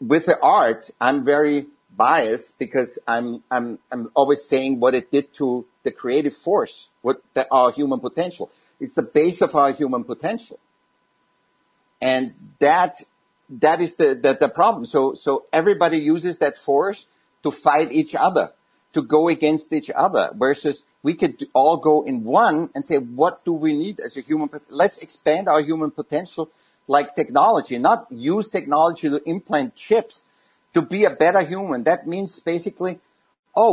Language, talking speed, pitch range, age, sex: English, 165 wpm, 145-200 Hz, 60-79, male